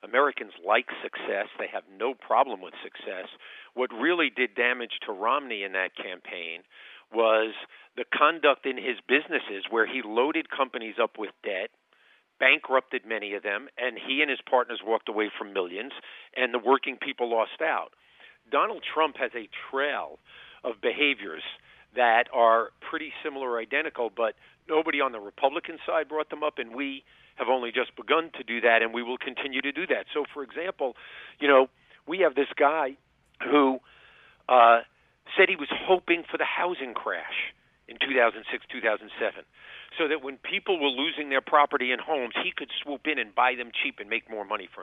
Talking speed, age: 175 wpm, 50-69